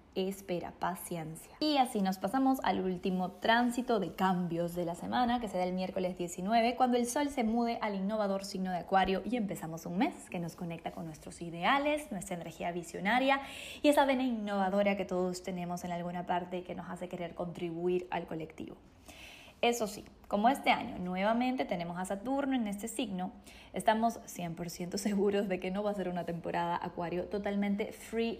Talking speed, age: 180 wpm, 20-39